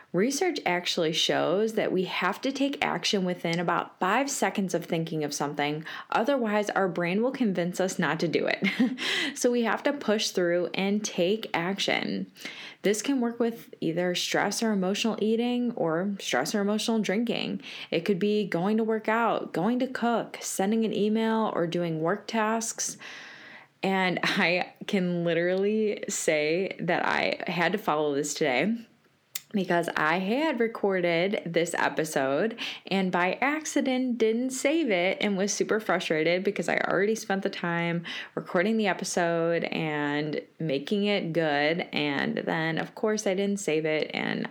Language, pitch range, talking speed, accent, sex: English, 170-220 Hz, 160 wpm, American, female